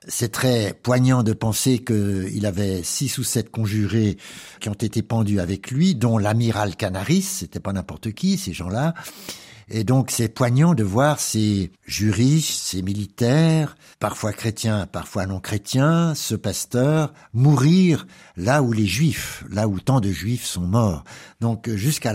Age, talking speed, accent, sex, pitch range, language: 60-79, 150 wpm, French, male, 100-140 Hz, French